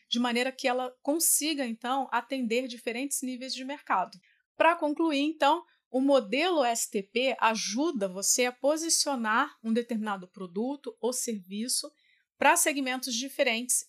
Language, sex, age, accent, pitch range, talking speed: Portuguese, female, 30-49, Brazilian, 225-285 Hz, 125 wpm